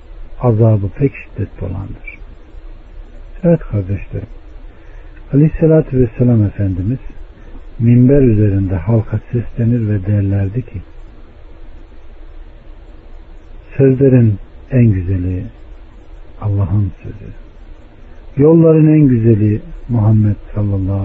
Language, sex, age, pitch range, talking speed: Turkish, male, 60-79, 80-120 Hz, 75 wpm